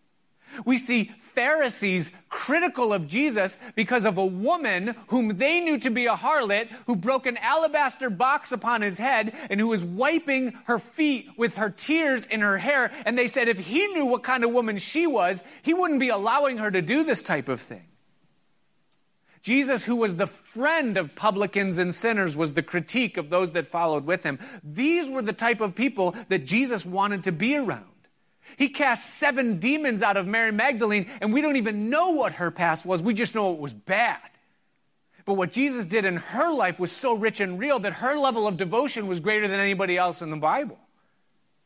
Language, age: English, 30-49